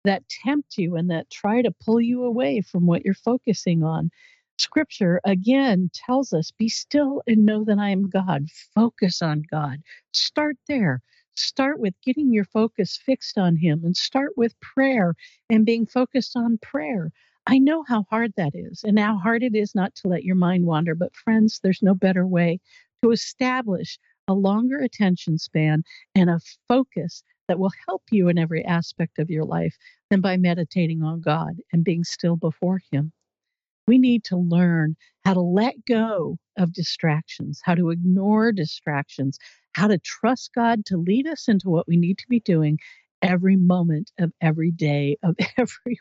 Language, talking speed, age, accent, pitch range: English, 175 wpm, 50-69, American, 170-230 Hz